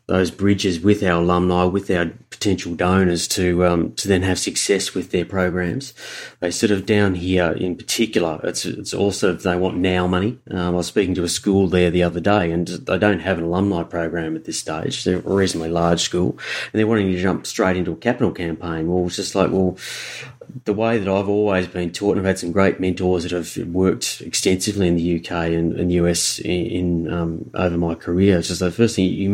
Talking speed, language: 225 wpm, English